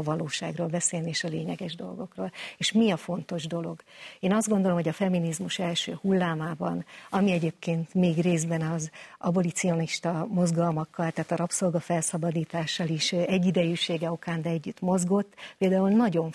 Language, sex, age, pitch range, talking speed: Hungarian, female, 50-69, 170-200 Hz, 140 wpm